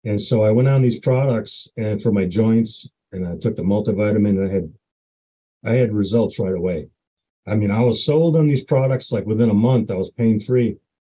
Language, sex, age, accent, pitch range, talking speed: English, male, 40-59, American, 105-135 Hz, 215 wpm